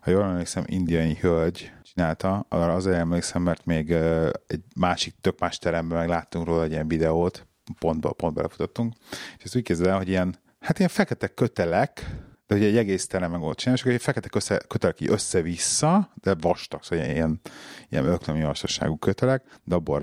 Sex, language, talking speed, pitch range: male, Hungarian, 175 wpm, 85-105 Hz